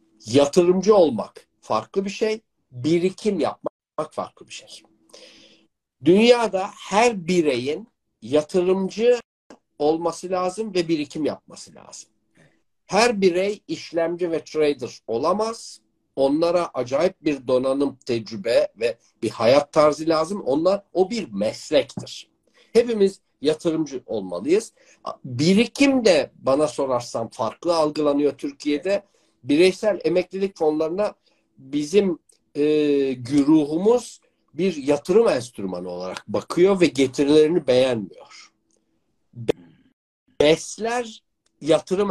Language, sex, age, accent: Turkish, male, 60-79, native